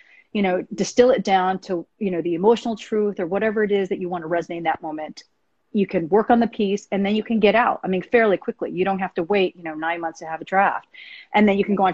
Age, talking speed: 30-49, 290 wpm